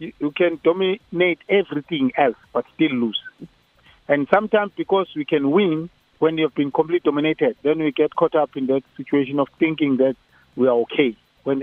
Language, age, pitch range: English, 50-69, 140-175 Hz